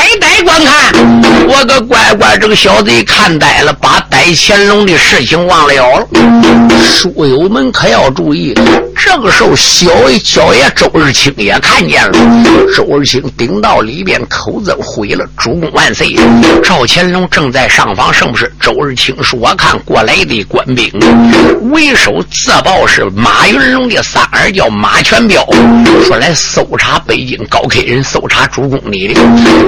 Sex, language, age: male, Chinese, 50-69